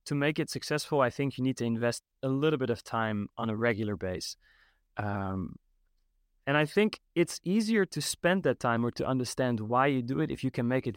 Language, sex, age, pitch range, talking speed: English, male, 30-49, 110-150 Hz, 225 wpm